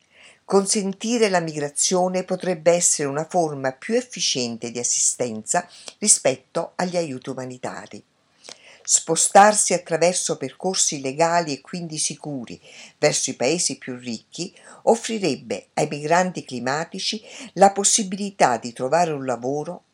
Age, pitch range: 50-69, 135-185 Hz